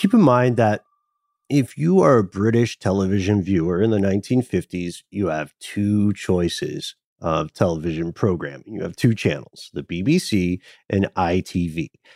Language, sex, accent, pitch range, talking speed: English, male, American, 100-145 Hz, 145 wpm